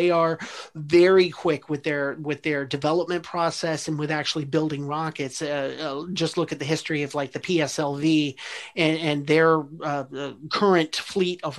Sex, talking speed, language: male, 175 wpm, English